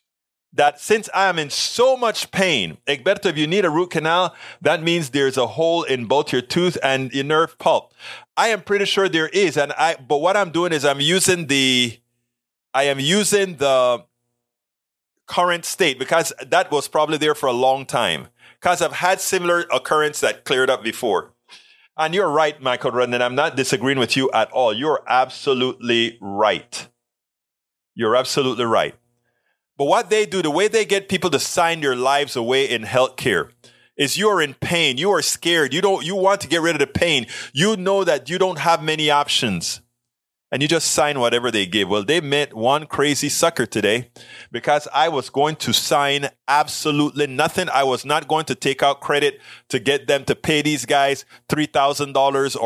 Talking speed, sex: 190 wpm, male